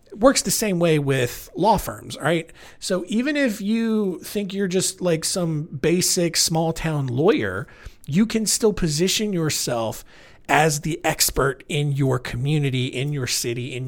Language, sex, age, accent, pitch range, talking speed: English, male, 40-59, American, 125-175 Hz, 155 wpm